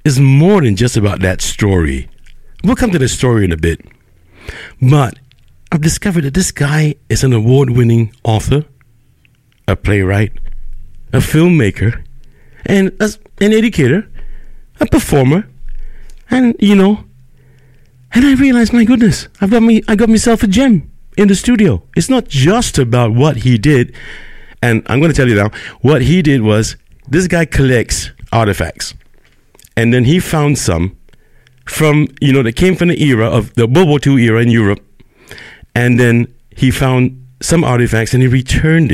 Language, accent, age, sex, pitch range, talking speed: English, American, 60-79, male, 110-160 Hz, 160 wpm